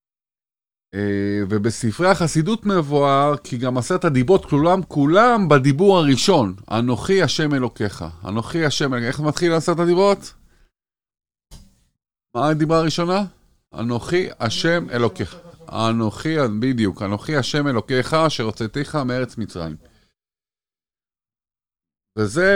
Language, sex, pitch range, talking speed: Hebrew, male, 120-165 Hz, 100 wpm